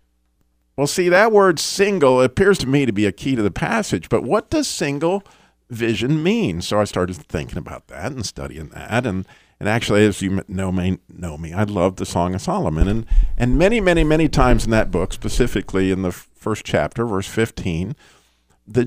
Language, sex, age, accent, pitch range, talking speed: English, male, 50-69, American, 90-125 Hz, 195 wpm